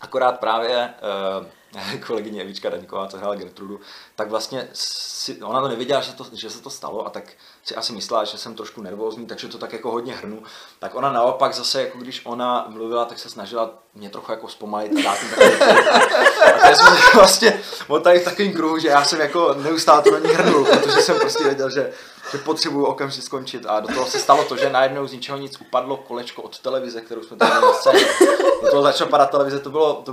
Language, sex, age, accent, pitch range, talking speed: Czech, male, 20-39, native, 120-165 Hz, 205 wpm